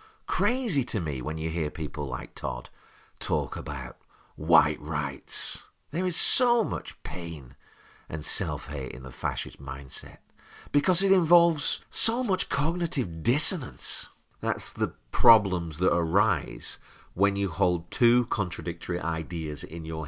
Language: English